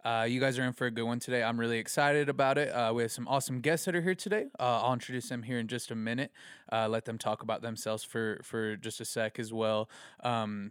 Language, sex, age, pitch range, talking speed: English, male, 20-39, 110-125 Hz, 270 wpm